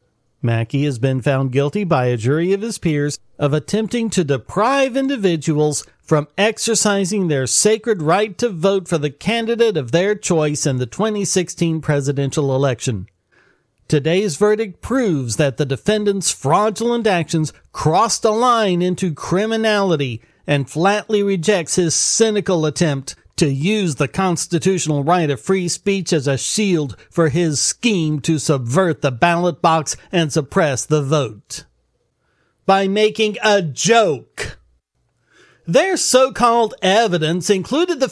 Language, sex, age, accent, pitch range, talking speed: English, male, 40-59, American, 150-215 Hz, 135 wpm